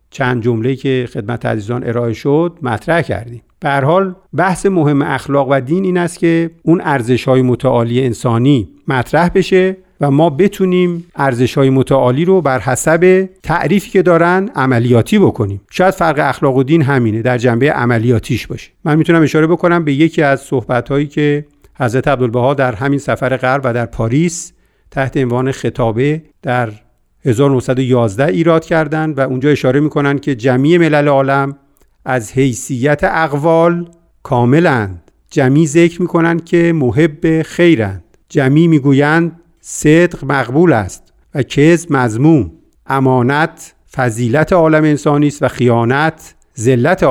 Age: 50-69